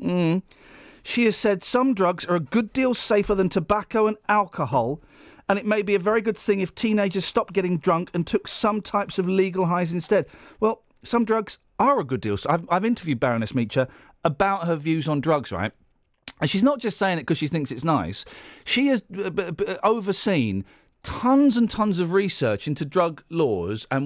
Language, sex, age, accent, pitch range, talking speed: English, male, 40-59, British, 150-210 Hz, 190 wpm